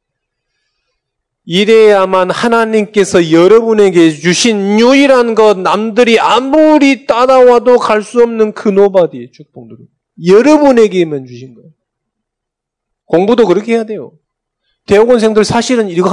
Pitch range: 130-220 Hz